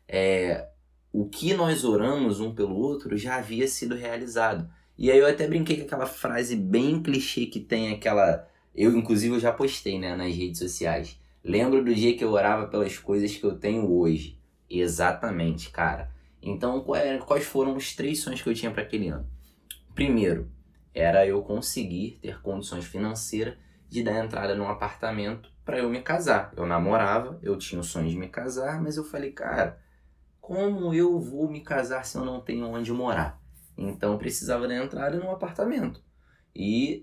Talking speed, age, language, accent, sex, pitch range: 170 wpm, 20-39, Portuguese, Brazilian, male, 85-130 Hz